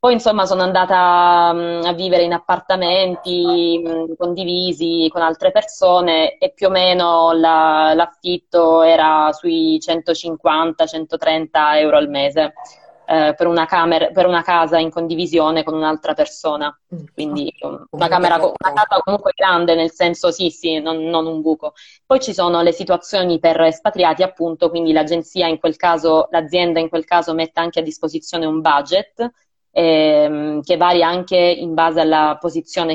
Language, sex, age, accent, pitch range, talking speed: Italian, female, 20-39, native, 160-175 Hz, 140 wpm